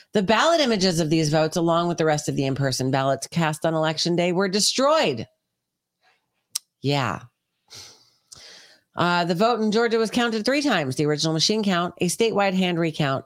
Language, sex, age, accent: English, female, 40-59, American